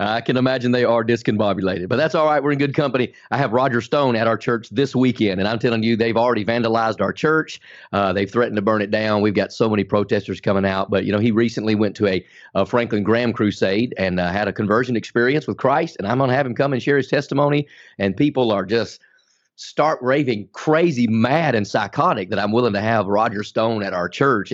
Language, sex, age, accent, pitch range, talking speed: English, male, 40-59, American, 105-130 Hz, 235 wpm